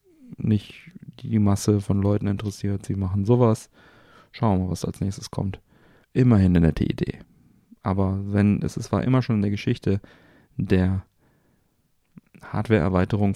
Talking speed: 145 wpm